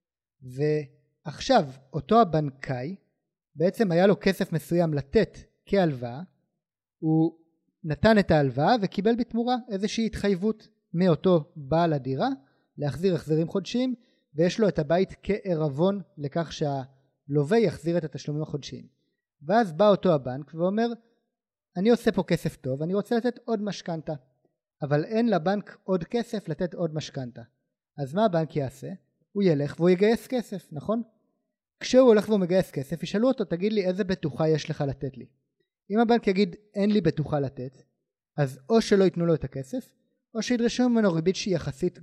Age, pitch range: 30-49, 150-215 Hz